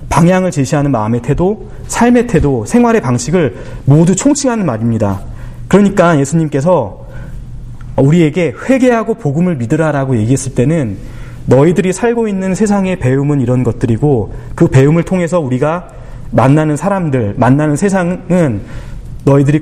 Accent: native